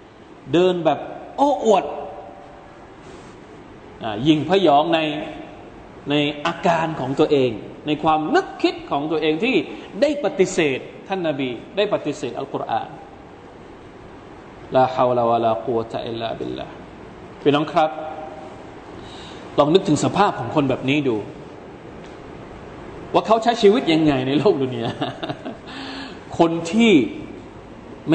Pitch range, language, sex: 150-200 Hz, Thai, male